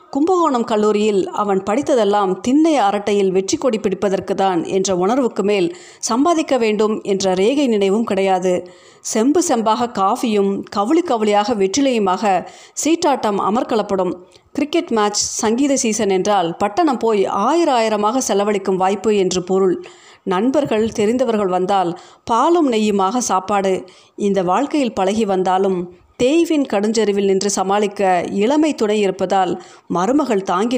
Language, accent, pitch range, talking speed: Tamil, native, 190-250 Hz, 115 wpm